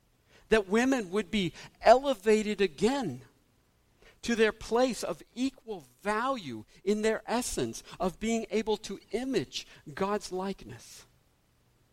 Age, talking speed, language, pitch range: 50-69, 110 wpm, English, 155-215 Hz